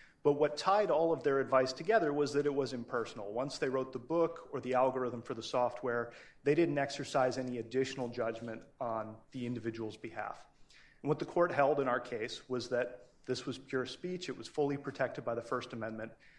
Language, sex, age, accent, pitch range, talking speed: English, male, 30-49, American, 125-150 Hz, 205 wpm